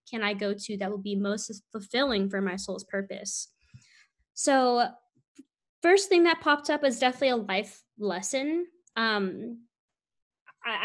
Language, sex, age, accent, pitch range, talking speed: English, female, 10-29, American, 205-270 Hz, 145 wpm